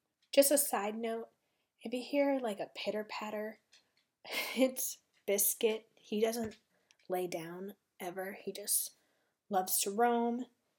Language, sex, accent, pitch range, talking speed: English, female, American, 210-265 Hz, 120 wpm